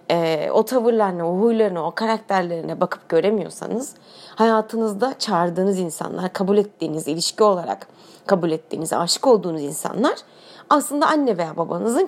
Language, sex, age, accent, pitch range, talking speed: Turkish, female, 30-49, native, 170-220 Hz, 120 wpm